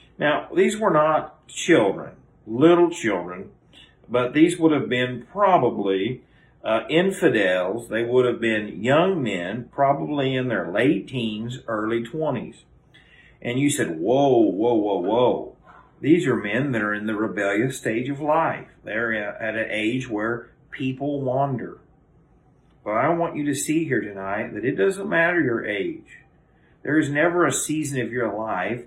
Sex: male